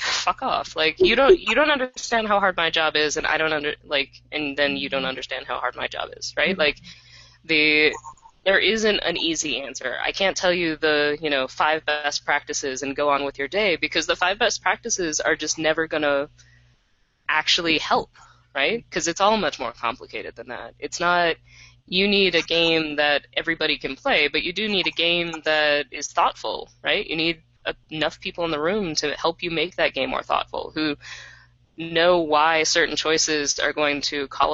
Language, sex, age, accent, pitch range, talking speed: English, female, 20-39, American, 145-175 Hz, 205 wpm